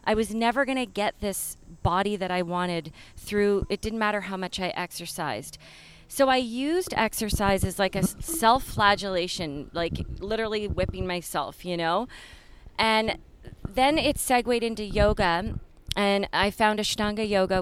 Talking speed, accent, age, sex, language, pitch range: 145 wpm, American, 30-49, female, English, 185-220 Hz